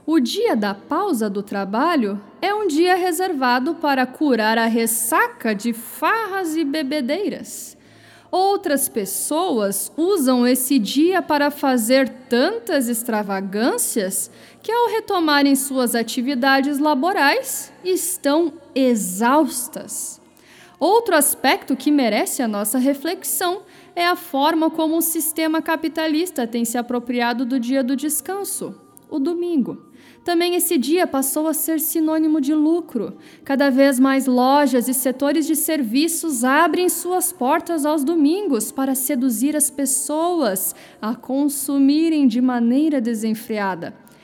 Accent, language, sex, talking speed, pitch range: Brazilian, Portuguese, female, 120 wpm, 250-325 Hz